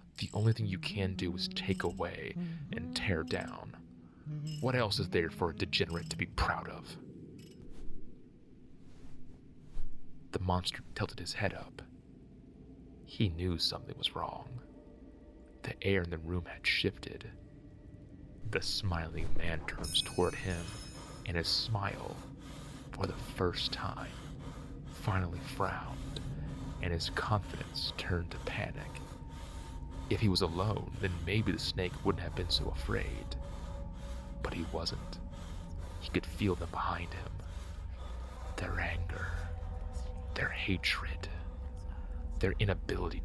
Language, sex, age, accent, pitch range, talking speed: English, male, 30-49, American, 80-95 Hz, 125 wpm